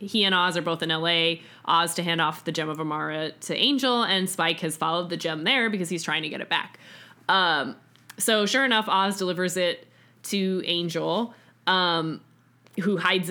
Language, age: English, 20-39